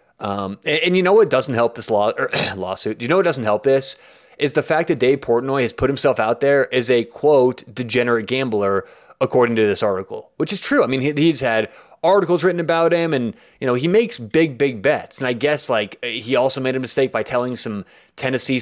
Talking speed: 230 wpm